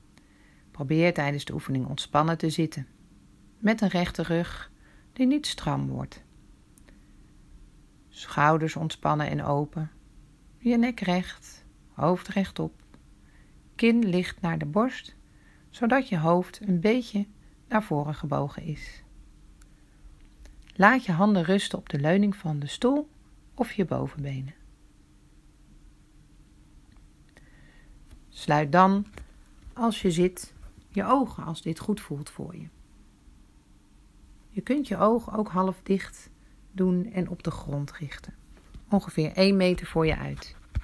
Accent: Dutch